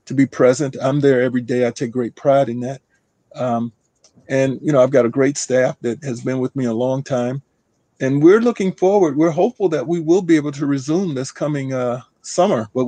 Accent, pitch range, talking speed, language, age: American, 120-150 Hz, 225 wpm, English, 40-59